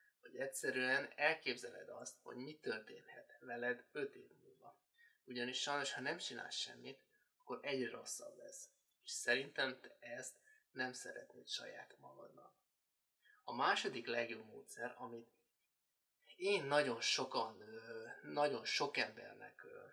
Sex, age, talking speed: male, 20-39, 120 wpm